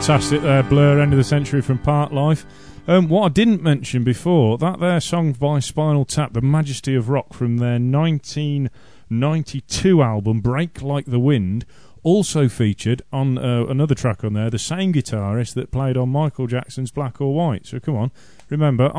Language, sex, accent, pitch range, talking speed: English, male, British, 115-150 Hz, 180 wpm